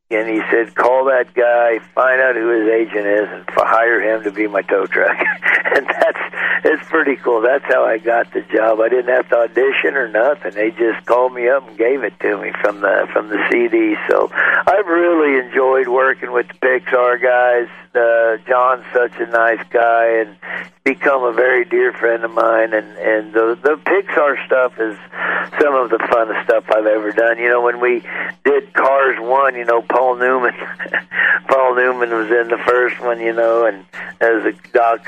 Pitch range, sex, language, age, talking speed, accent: 110-130 Hz, male, English, 60-79, 195 wpm, American